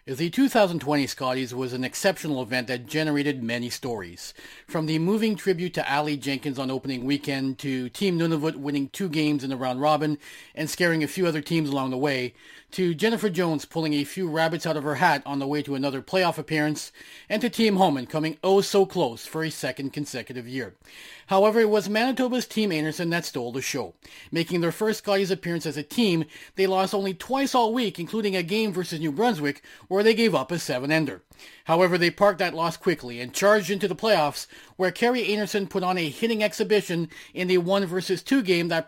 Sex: male